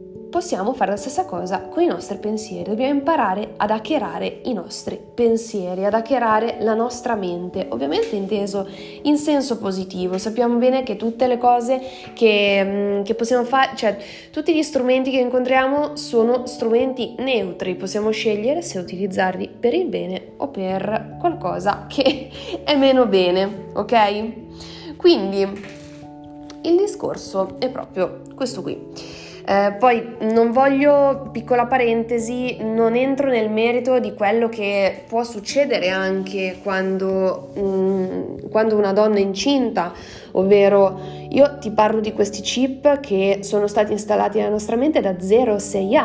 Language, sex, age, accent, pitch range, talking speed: Italian, female, 20-39, native, 195-250 Hz, 135 wpm